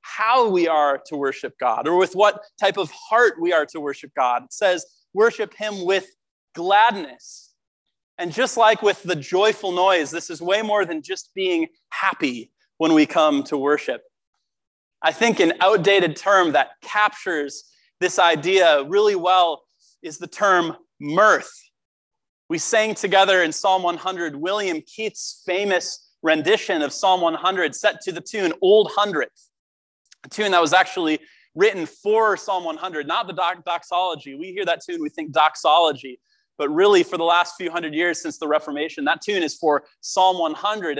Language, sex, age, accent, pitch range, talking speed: English, male, 30-49, American, 170-225 Hz, 165 wpm